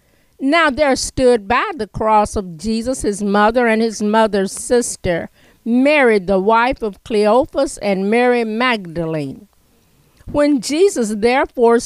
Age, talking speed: 50-69, 125 wpm